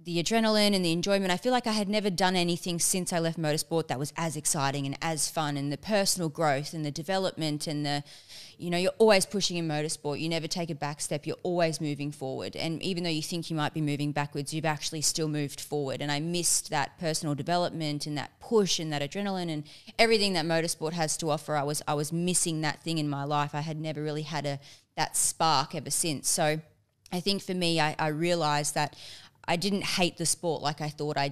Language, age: English, 20-39